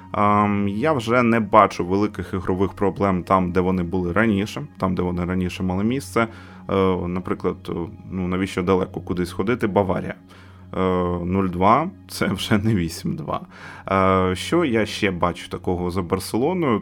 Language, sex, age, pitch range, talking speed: Ukrainian, male, 20-39, 90-110 Hz, 130 wpm